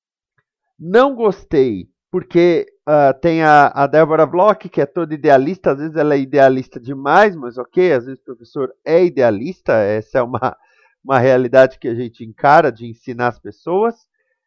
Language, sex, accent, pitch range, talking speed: Portuguese, male, Brazilian, 130-180 Hz, 165 wpm